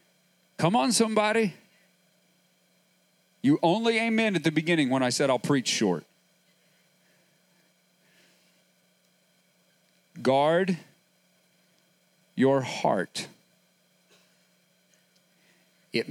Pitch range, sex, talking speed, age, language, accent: 160-265 Hz, male, 70 wpm, 40-59, English, American